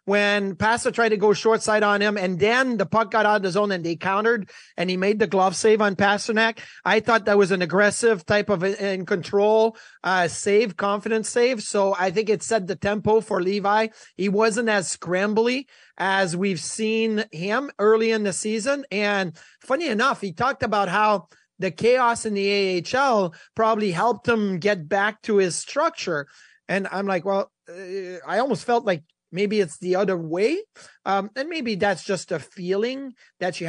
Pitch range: 190-230 Hz